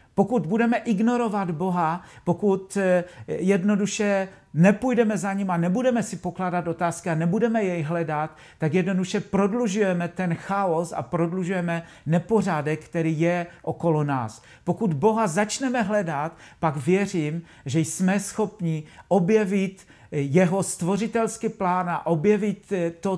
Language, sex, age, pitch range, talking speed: Czech, male, 50-69, 165-200 Hz, 120 wpm